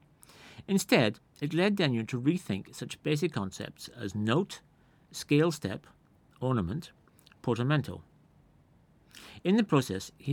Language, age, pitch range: English, 50-69, 100-150 Hz